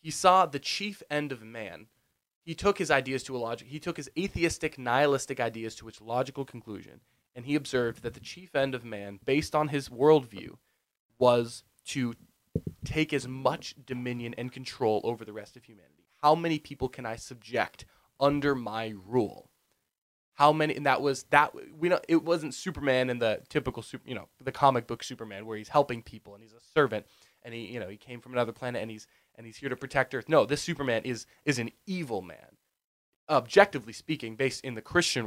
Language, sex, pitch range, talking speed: English, male, 115-145 Hz, 200 wpm